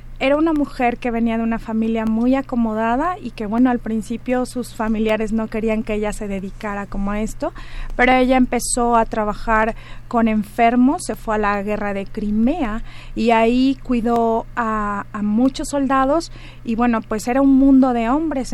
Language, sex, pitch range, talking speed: Spanish, female, 220-250 Hz, 180 wpm